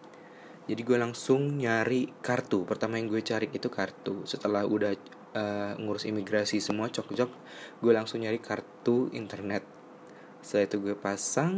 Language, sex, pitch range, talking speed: Indonesian, male, 100-120 Hz, 140 wpm